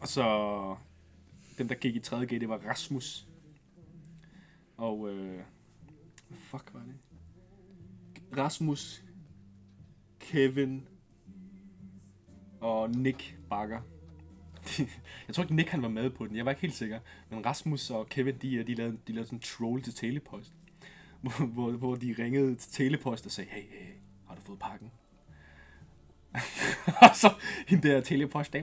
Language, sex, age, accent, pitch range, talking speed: Danish, male, 20-39, native, 110-150 Hz, 145 wpm